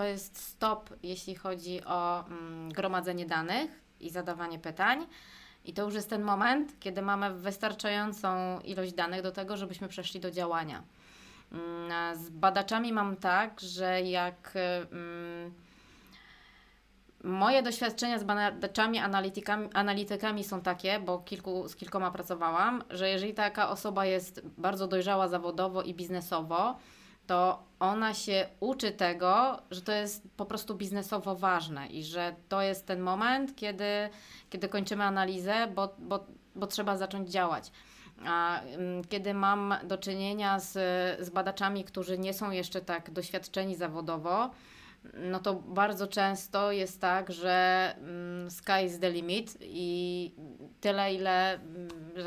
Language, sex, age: Polish, female, 20-39